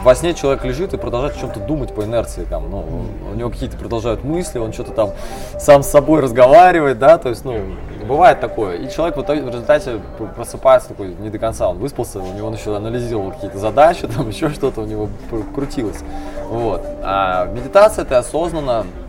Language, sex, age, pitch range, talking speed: Russian, male, 20-39, 110-145 Hz, 185 wpm